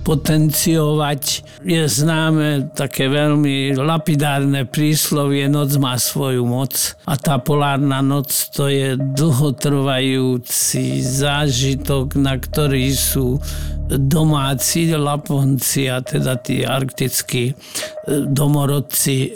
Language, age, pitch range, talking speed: Slovak, 50-69, 140-165 Hz, 90 wpm